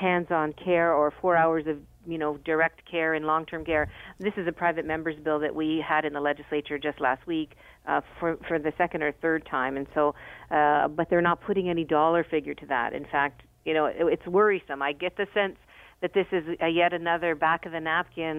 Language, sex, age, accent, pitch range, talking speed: English, female, 50-69, American, 155-190 Hz, 225 wpm